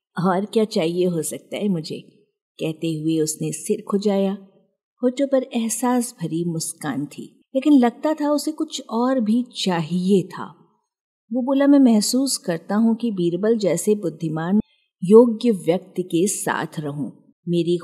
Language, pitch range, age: Hindi, 165-225 Hz, 50-69